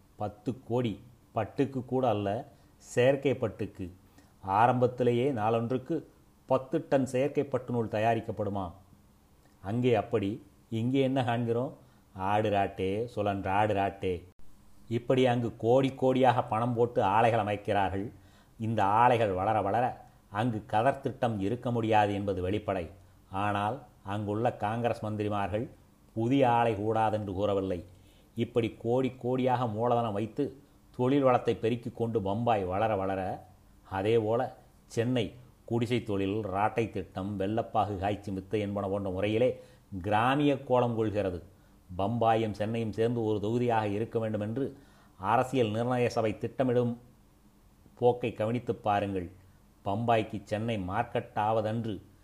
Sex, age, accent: male, 30-49, native